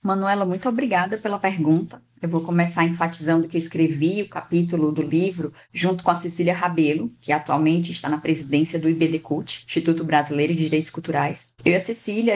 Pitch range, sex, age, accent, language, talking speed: 170-210 Hz, female, 10-29, Brazilian, Portuguese, 180 wpm